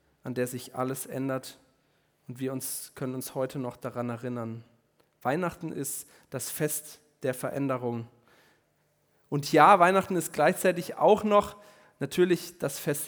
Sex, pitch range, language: male, 130-165 Hz, German